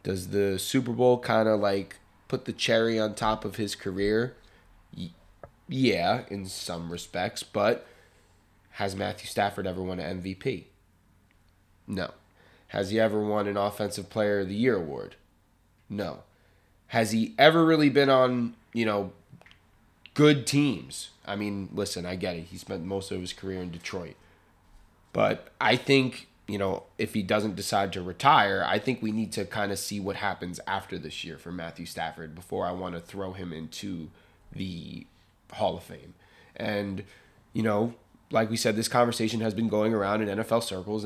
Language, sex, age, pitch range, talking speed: English, male, 20-39, 95-110 Hz, 170 wpm